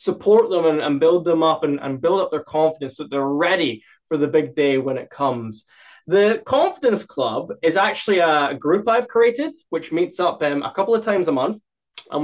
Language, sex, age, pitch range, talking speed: English, male, 20-39, 150-195 Hz, 215 wpm